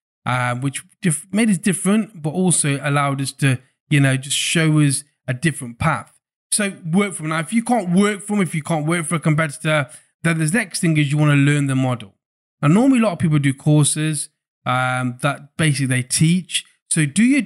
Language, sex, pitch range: English, male, 140-175 Hz